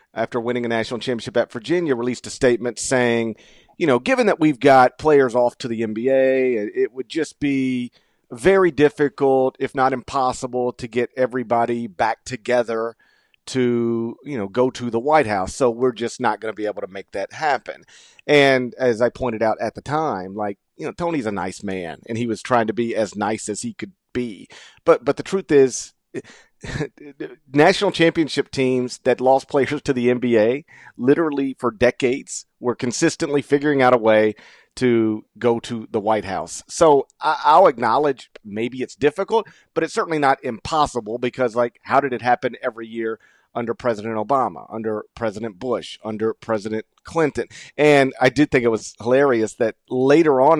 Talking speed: 180 wpm